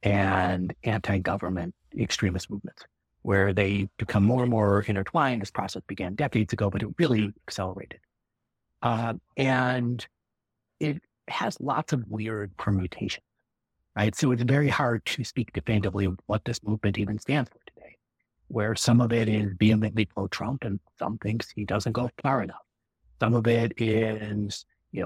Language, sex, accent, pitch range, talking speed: English, male, American, 100-125 Hz, 155 wpm